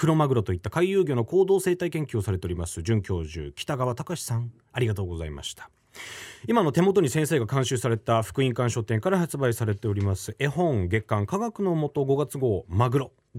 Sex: male